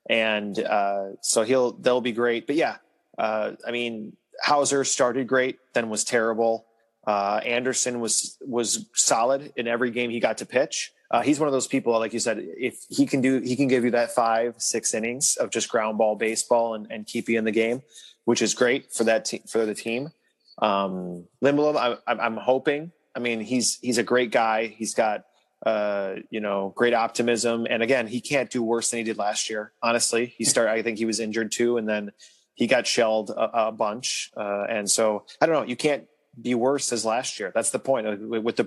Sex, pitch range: male, 110-125 Hz